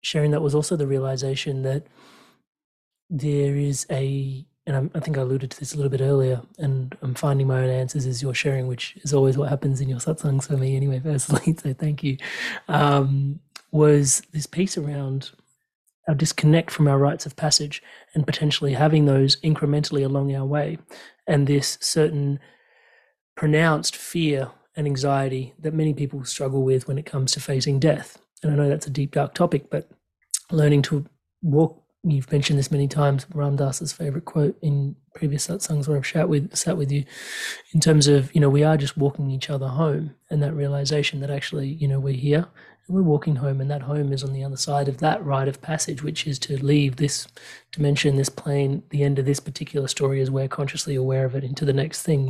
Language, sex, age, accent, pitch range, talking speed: English, male, 30-49, Australian, 135-155 Hz, 200 wpm